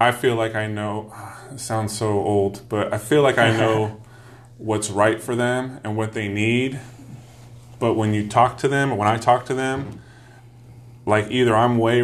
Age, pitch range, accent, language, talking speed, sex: 30-49, 105-120 Hz, American, English, 190 wpm, male